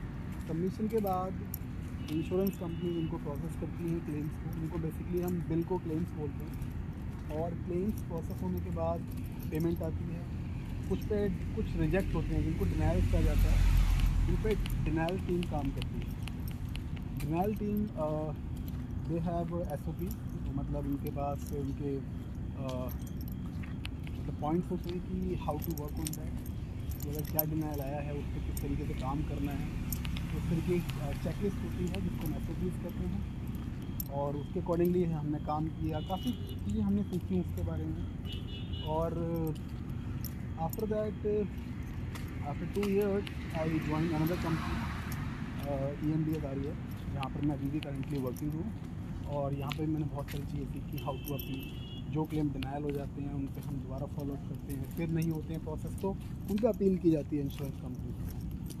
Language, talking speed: English, 105 wpm